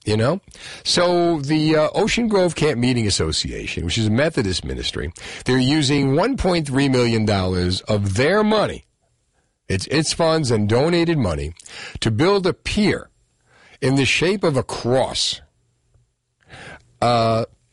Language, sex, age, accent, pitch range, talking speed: English, male, 50-69, American, 105-150 Hz, 135 wpm